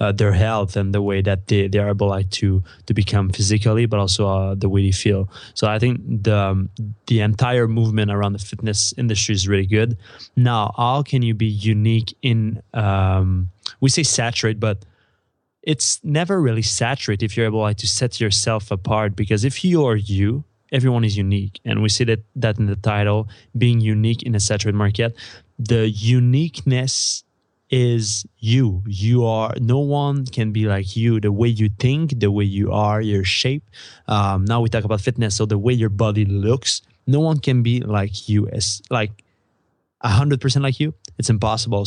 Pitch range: 100-120 Hz